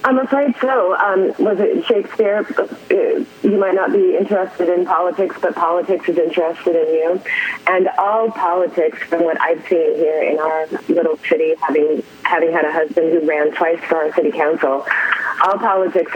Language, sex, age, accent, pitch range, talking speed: English, female, 30-49, American, 165-230 Hz, 170 wpm